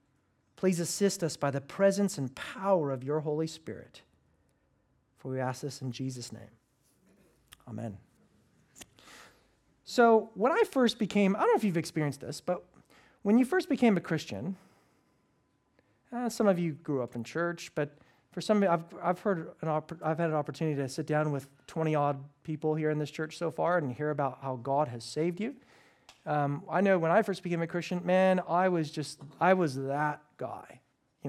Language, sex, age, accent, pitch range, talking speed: English, male, 40-59, American, 140-195 Hz, 180 wpm